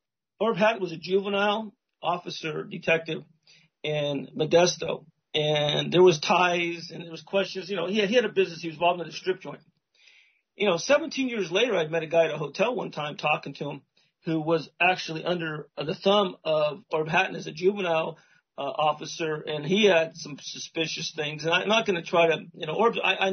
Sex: male